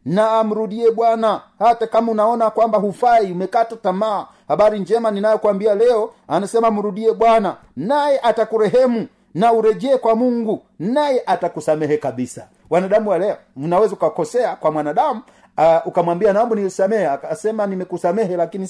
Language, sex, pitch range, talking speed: Swahili, male, 170-230 Hz, 125 wpm